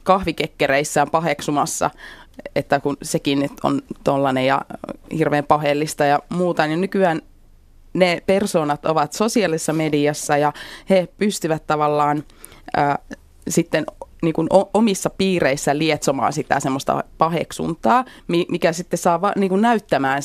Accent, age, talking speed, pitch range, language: native, 30-49, 100 wpm, 145-185 Hz, Finnish